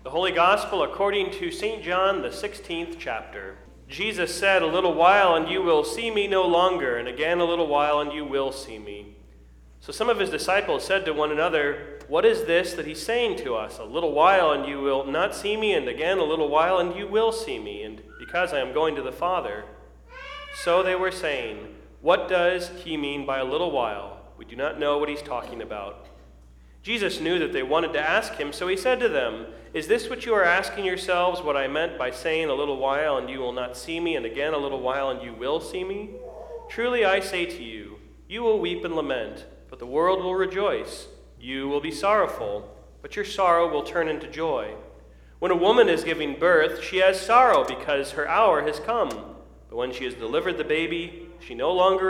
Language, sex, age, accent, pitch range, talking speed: English, male, 30-49, American, 145-240 Hz, 220 wpm